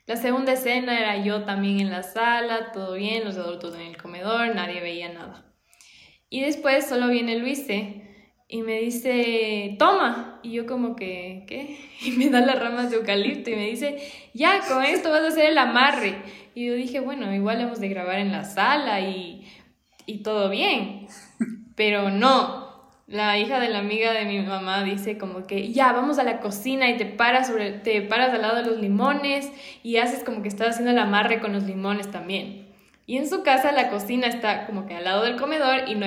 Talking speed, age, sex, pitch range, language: 205 wpm, 10-29, female, 205-255 Hz, Spanish